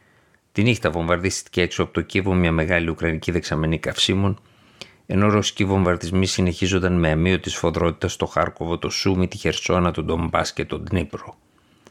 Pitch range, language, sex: 85-100 Hz, Greek, male